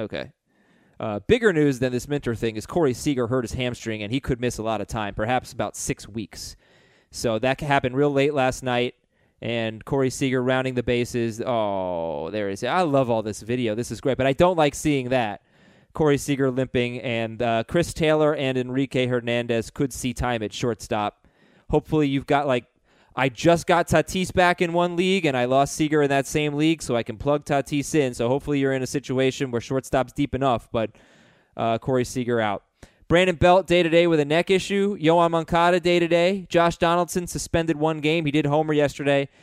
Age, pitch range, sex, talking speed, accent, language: 20-39, 125-170 Hz, male, 200 wpm, American, English